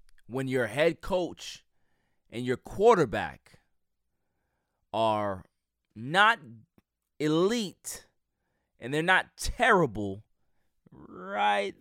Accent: American